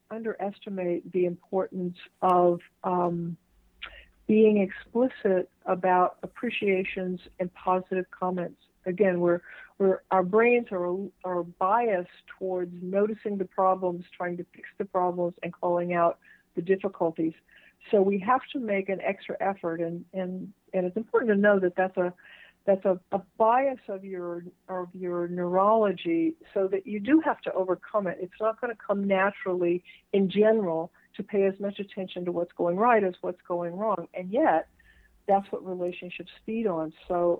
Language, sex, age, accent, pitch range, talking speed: English, female, 50-69, American, 175-205 Hz, 155 wpm